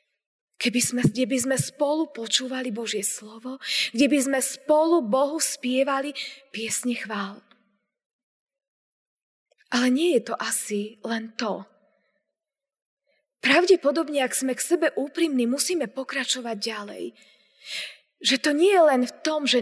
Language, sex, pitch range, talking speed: Slovak, female, 230-275 Hz, 120 wpm